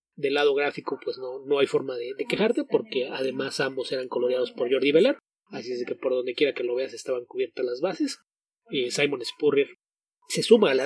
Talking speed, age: 215 wpm, 30-49